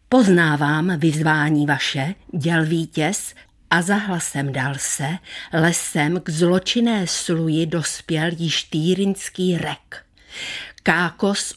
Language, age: Czech, 50-69